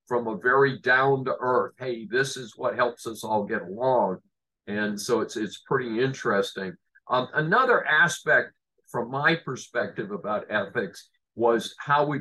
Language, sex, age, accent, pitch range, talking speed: English, male, 50-69, American, 105-135 Hz, 155 wpm